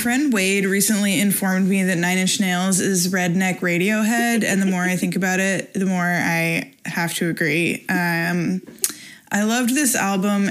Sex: female